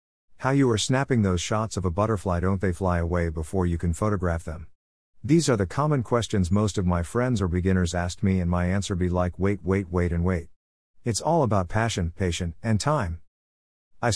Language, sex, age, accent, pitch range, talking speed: English, male, 50-69, American, 85-110 Hz, 210 wpm